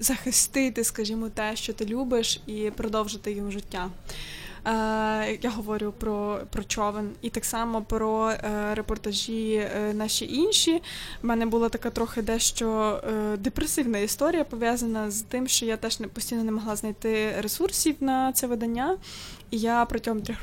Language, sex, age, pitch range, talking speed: Ukrainian, female, 20-39, 215-255 Hz, 140 wpm